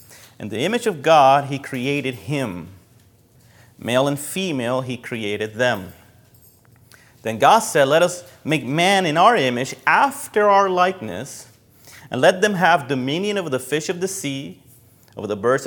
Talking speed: 155 wpm